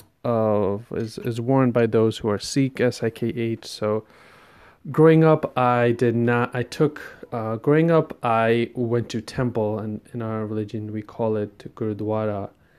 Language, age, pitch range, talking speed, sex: English, 20-39, 110-125 Hz, 155 wpm, male